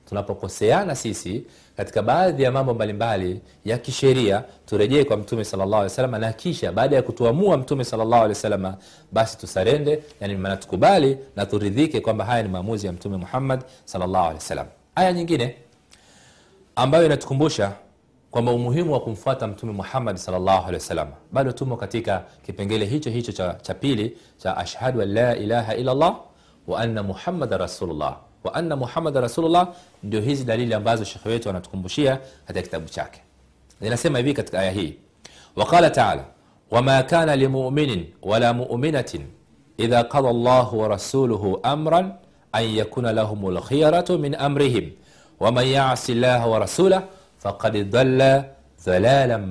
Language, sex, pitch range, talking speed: Swahili, male, 100-135 Hz, 145 wpm